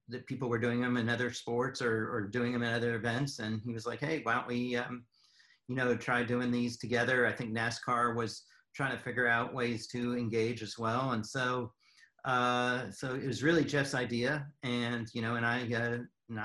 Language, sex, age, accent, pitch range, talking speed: English, male, 40-59, American, 120-130 Hz, 215 wpm